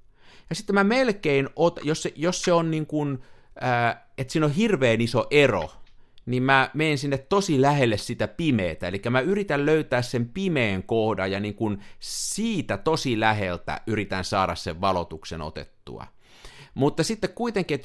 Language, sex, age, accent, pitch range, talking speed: Finnish, male, 50-69, native, 100-150 Hz, 160 wpm